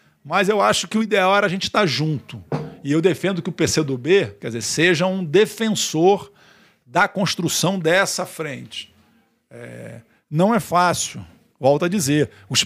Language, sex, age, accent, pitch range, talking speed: English, male, 50-69, Brazilian, 145-195 Hz, 155 wpm